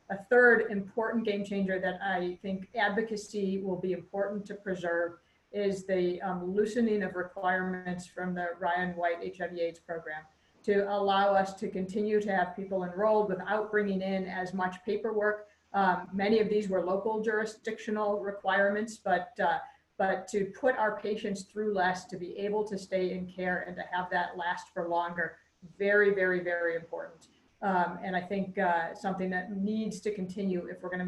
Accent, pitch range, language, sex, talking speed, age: American, 180-210 Hz, English, female, 175 wpm, 40-59